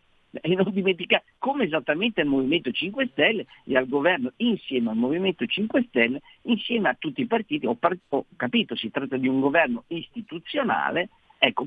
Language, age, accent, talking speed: Italian, 50-69, native, 165 wpm